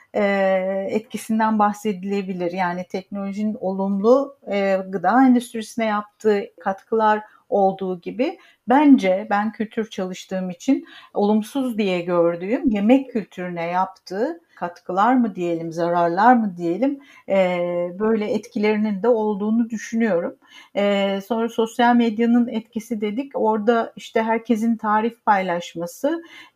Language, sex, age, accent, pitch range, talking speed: Turkish, female, 60-79, native, 205-245 Hz, 95 wpm